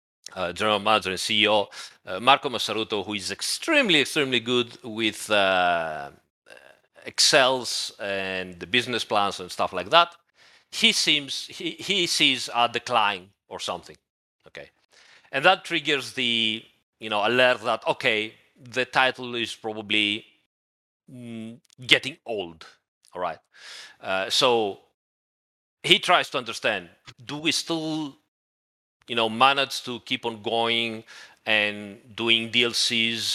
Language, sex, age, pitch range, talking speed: English, male, 40-59, 105-130 Hz, 130 wpm